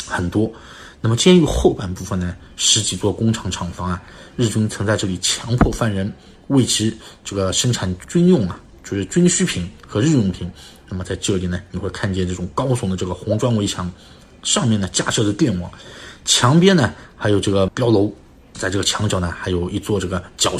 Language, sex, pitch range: Chinese, male, 95-120 Hz